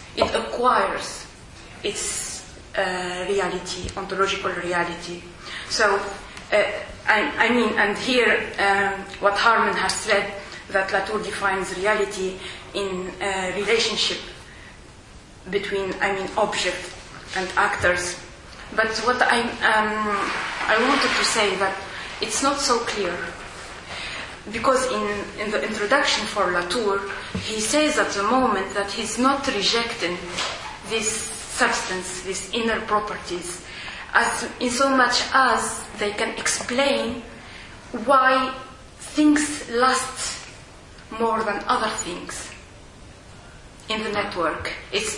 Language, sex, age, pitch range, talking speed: English, female, 20-39, 190-235 Hz, 115 wpm